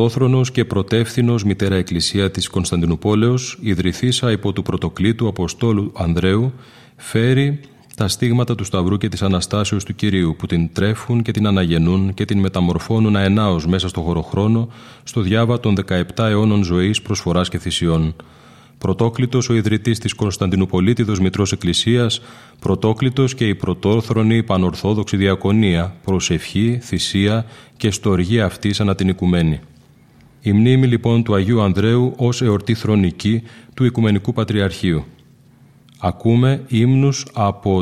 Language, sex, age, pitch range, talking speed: Greek, male, 30-49, 95-120 Hz, 130 wpm